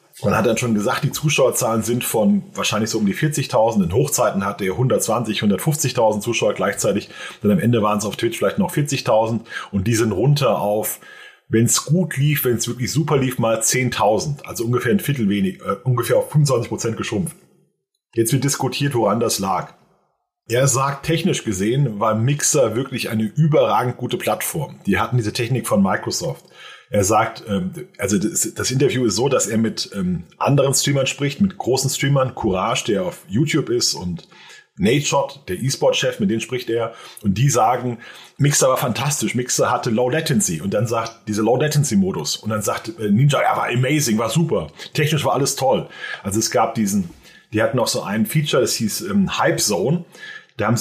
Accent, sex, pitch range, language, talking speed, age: German, male, 115-155 Hz, German, 185 wpm, 30-49